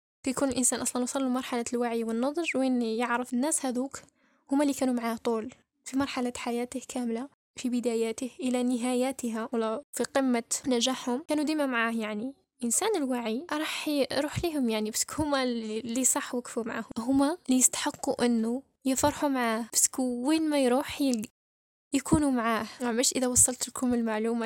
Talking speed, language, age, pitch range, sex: 155 wpm, Arabic, 10-29, 230-260 Hz, female